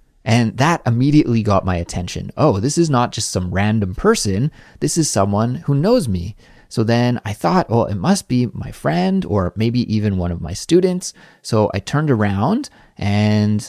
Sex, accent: male, American